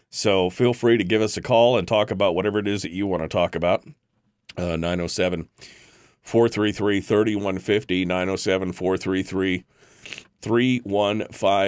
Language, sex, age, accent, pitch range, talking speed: English, male, 40-59, American, 80-100 Hz, 115 wpm